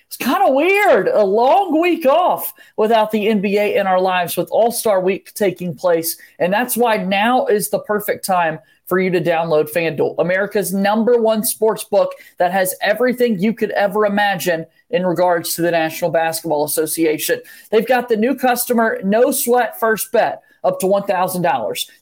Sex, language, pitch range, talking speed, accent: male, English, 180-230 Hz, 175 wpm, American